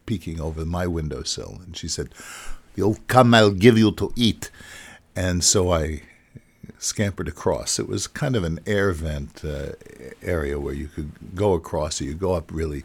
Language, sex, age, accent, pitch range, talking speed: English, male, 60-79, American, 80-100 Hz, 175 wpm